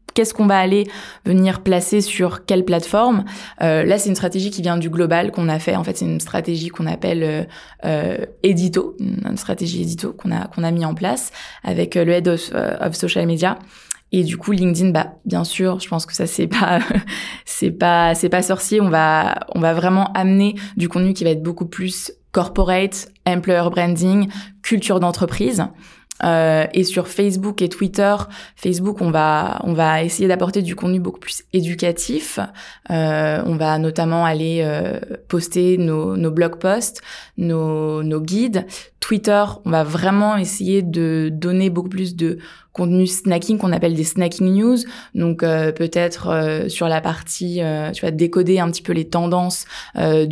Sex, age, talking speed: female, 20-39, 180 wpm